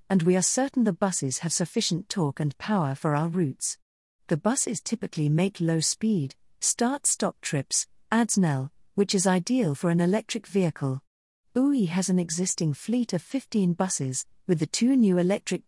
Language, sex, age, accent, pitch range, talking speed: English, female, 50-69, British, 155-210 Hz, 165 wpm